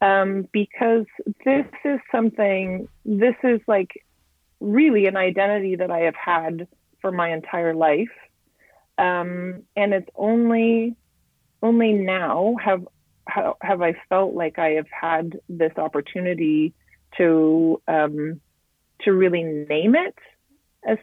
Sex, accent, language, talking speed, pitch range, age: female, American, English, 120 wpm, 160-210 Hz, 30-49